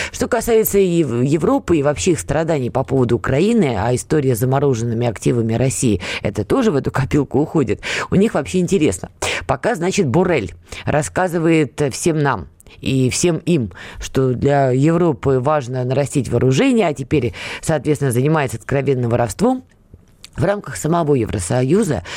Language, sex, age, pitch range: Russian, female, 20-39, 130-180 Hz